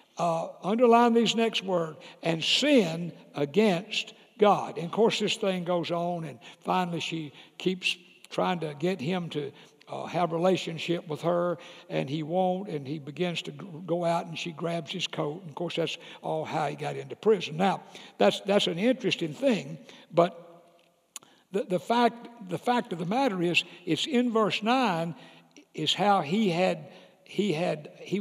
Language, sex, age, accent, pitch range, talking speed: English, male, 60-79, American, 165-215 Hz, 175 wpm